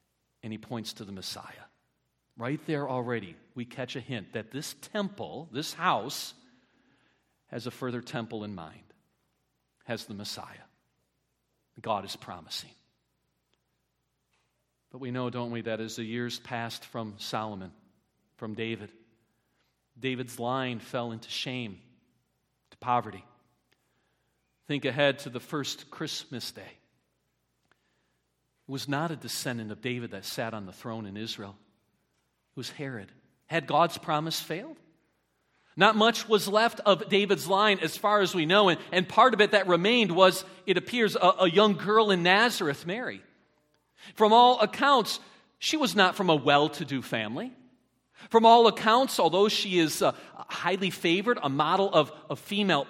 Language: English